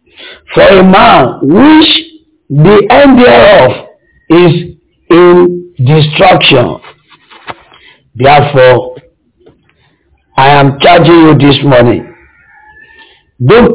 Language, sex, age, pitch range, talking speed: English, male, 50-69, 160-200 Hz, 80 wpm